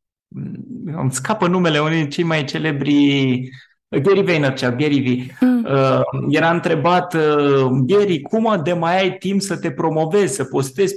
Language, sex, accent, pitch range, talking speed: Romanian, male, native, 140-185 Hz, 135 wpm